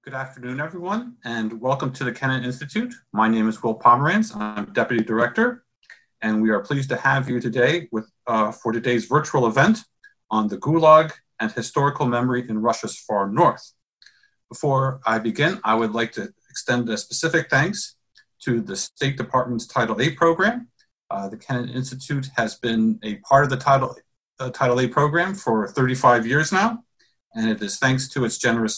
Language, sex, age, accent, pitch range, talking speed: English, male, 50-69, American, 115-150 Hz, 175 wpm